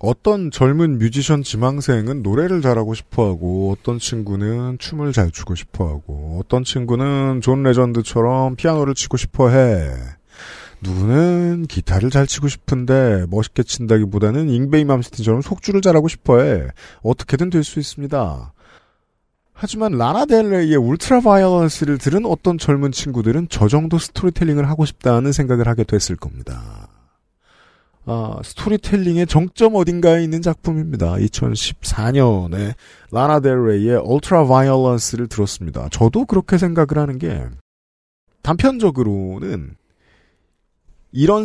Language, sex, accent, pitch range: Korean, male, native, 105-155 Hz